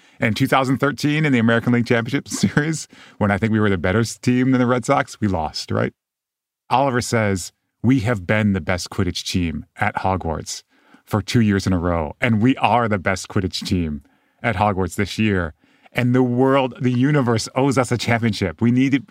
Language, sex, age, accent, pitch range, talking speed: English, male, 30-49, American, 95-130 Hz, 200 wpm